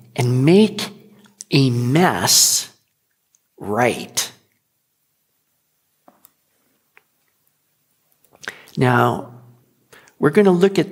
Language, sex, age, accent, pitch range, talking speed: English, male, 50-69, American, 130-195 Hz, 60 wpm